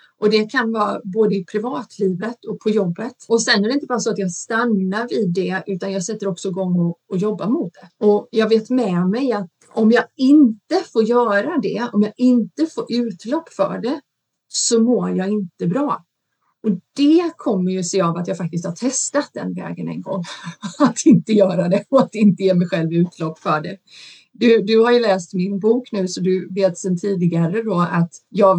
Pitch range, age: 180-225 Hz, 30-49